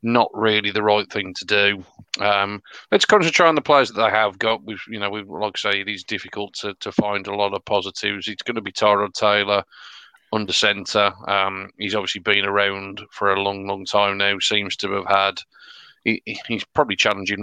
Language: English